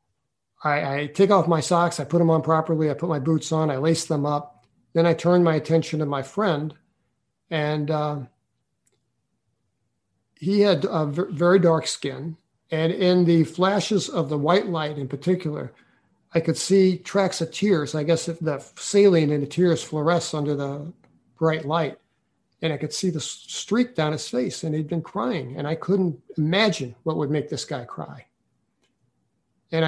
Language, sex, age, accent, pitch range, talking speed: English, male, 50-69, American, 150-175 Hz, 175 wpm